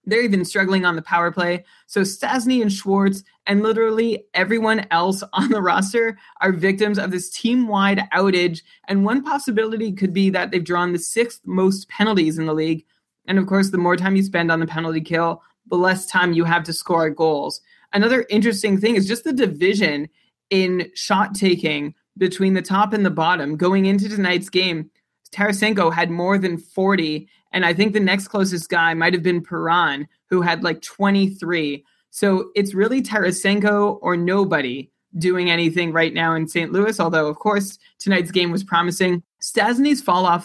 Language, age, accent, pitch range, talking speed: English, 20-39, American, 170-210 Hz, 180 wpm